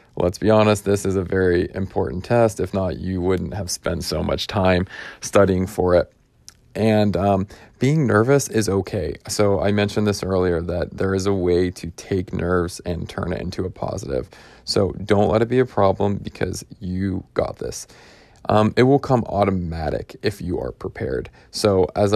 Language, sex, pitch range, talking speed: English, male, 95-105 Hz, 185 wpm